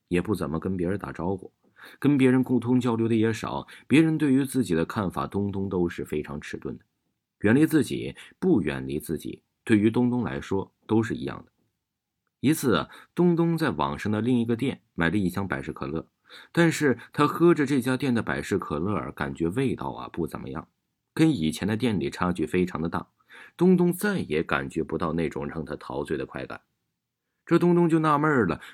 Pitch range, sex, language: 85-130 Hz, male, Chinese